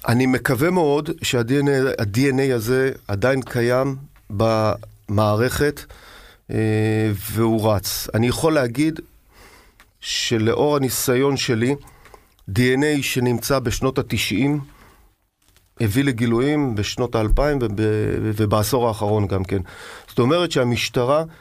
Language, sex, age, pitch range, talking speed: Hebrew, male, 40-59, 110-135 Hz, 85 wpm